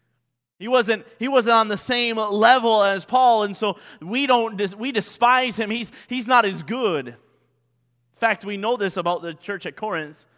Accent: American